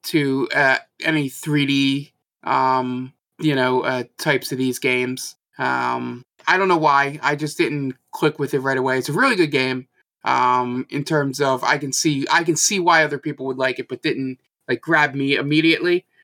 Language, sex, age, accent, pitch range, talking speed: English, male, 20-39, American, 130-155 Hz, 190 wpm